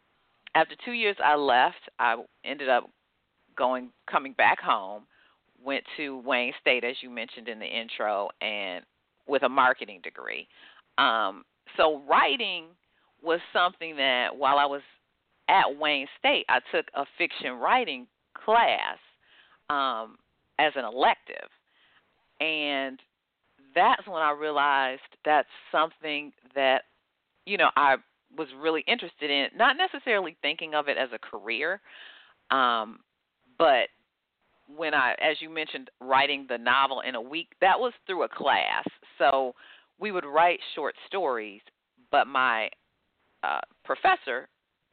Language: English